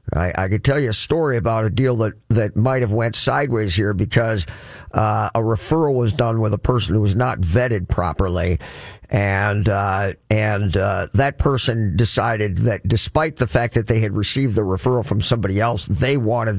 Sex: male